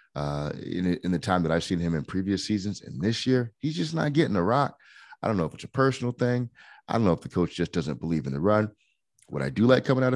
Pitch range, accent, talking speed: 85-125 Hz, American, 280 wpm